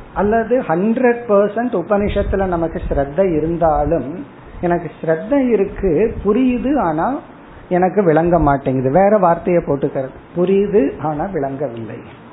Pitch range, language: 145-200 Hz, Tamil